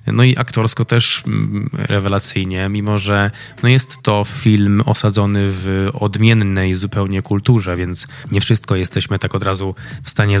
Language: Polish